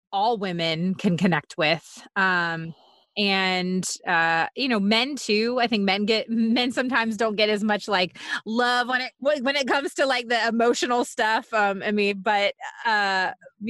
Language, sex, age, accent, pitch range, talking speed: English, female, 20-39, American, 185-245 Hz, 170 wpm